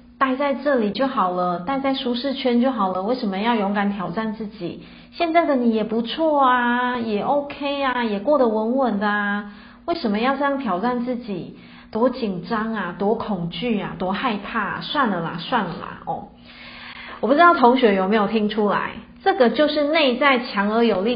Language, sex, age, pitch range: Chinese, female, 30-49, 195-245 Hz